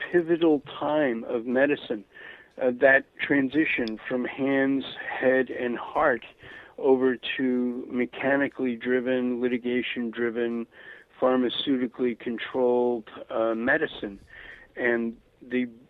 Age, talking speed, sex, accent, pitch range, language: 60-79, 90 wpm, male, American, 125-160 Hz, English